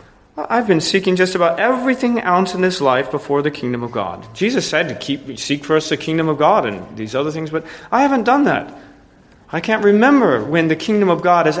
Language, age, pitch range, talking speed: English, 40-59, 130-190 Hz, 220 wpm